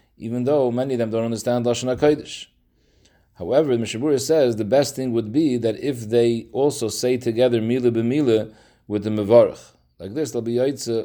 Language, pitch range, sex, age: English, 110-130 Hz, male, 40-59